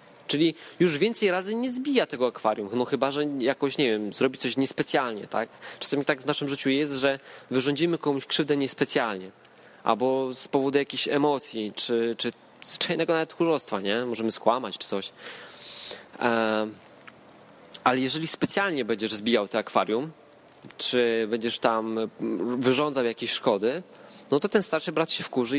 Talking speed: 155 wpm